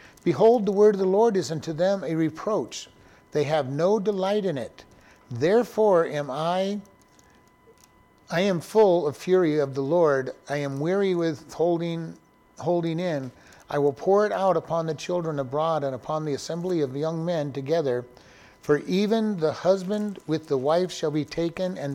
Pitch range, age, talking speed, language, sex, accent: 150-190 Hz, 50-69, 170 wpm, English, male, American